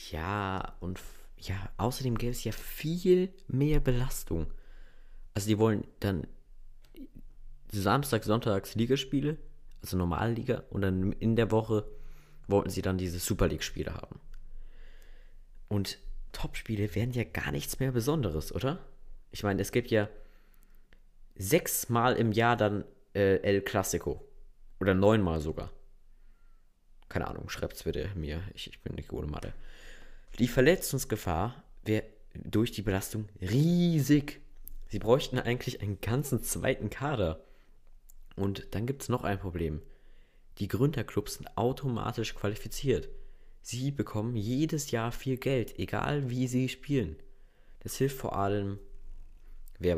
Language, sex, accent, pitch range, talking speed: German, male, German, 90-125 Hz, 130 wpm